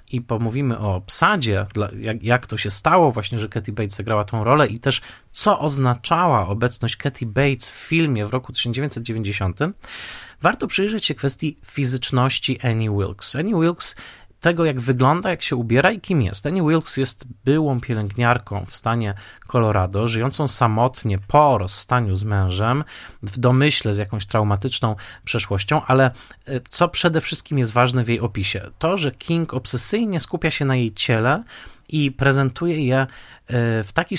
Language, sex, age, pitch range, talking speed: Polish, male, 20-39, 110-140 Hz, 155 wpm